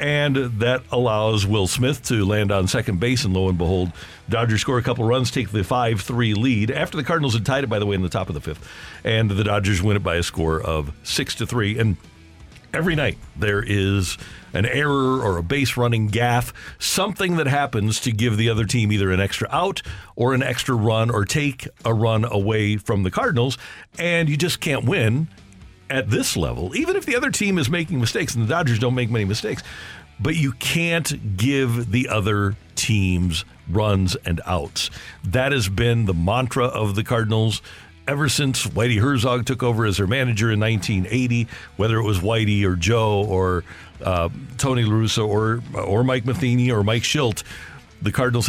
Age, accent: 50-69, American